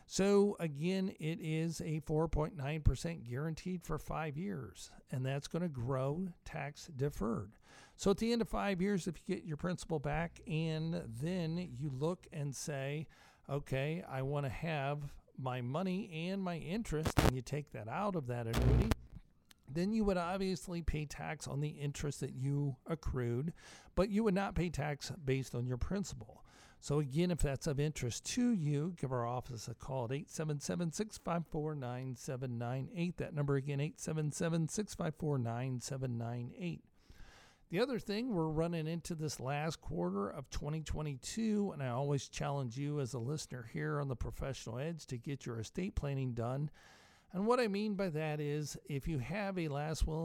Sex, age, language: male, 50-69, English